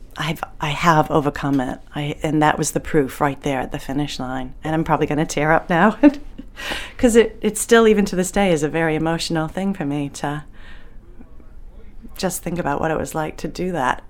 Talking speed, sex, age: 215 wpm, female, 40-59